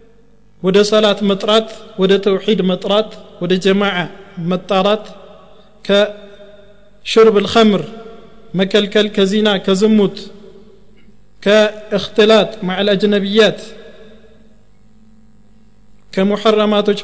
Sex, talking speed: male, 65 wpm